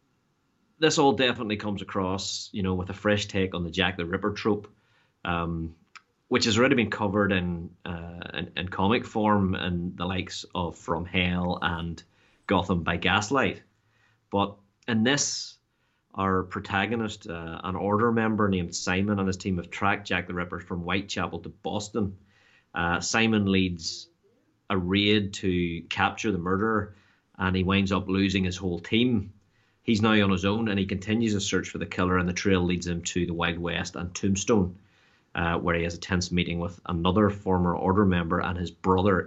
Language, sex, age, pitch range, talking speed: English, male, 30-49, 90-105 Hz, 180 wpm